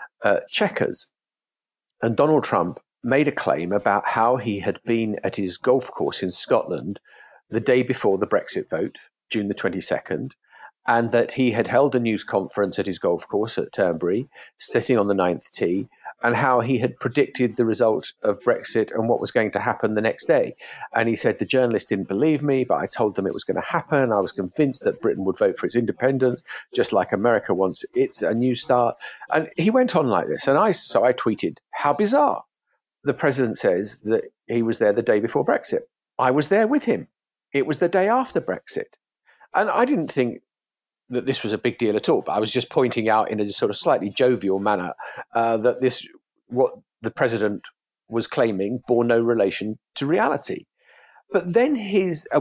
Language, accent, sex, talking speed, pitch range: English, British, male, 205 wpm, 115-190 Hz